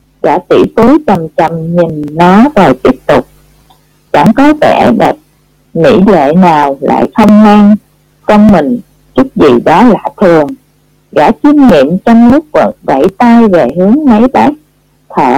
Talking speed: 150 wpm